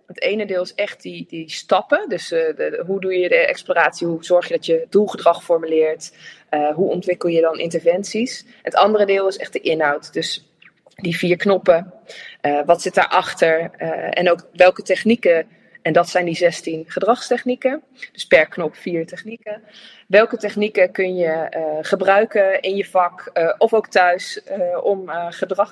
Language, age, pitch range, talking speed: Dutch, 20-39, 175-225 Hz, 175 wpm